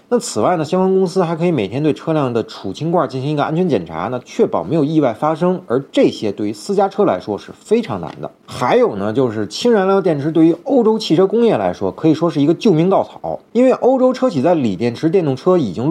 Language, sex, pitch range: Chinese, male, 130-200 Hz